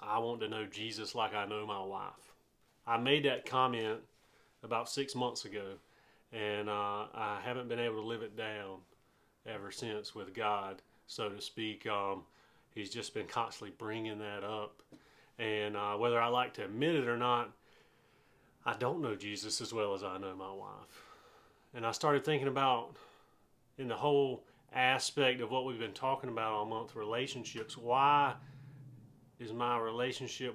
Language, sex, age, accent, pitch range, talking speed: English, male, 30-49, American, 110-130 Hz, 170 wpm